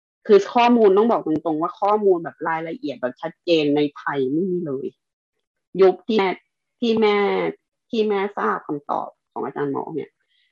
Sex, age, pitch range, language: female, 30-49, 155-215 Hz, Thai